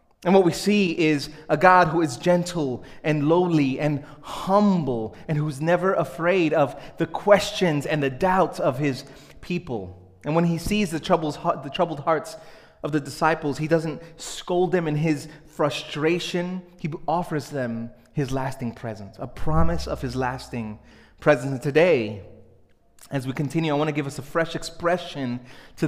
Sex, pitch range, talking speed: male, 130-165 Hz, 160 wpm